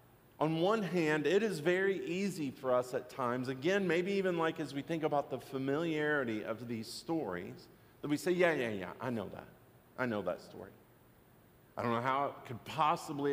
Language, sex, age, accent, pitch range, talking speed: English, male, 50-69, American, 120-160 Hz, 200 wpm